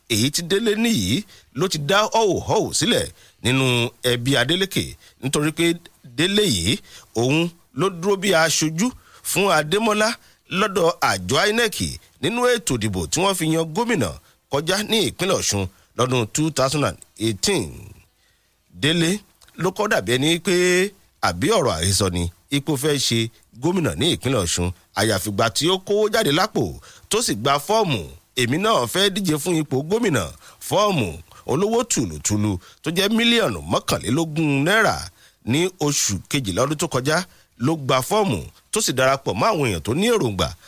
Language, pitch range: English, 115-190 Hz